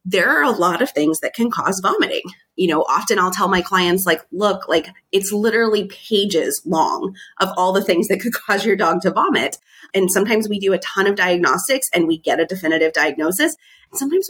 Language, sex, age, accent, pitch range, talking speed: English, female, 30-49, American, 165-230 Hz, 210 wpm